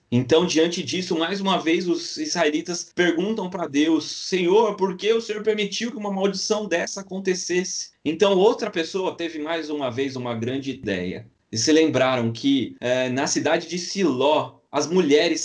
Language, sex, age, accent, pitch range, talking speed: Portuguese, male, 20-39, Brazilian, 115-160 Hz, 165 wpm